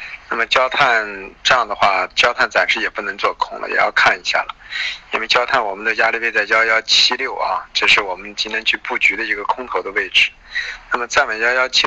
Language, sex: Chinese, male